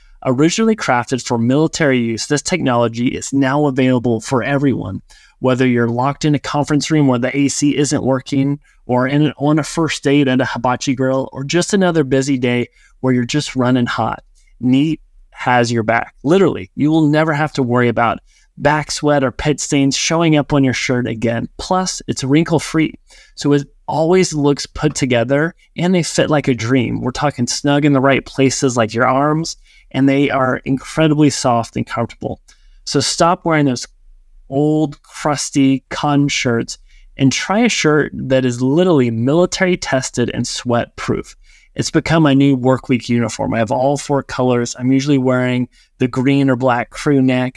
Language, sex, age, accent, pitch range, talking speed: English, male, 20-39, American, 125-150 Hz, 180 wpm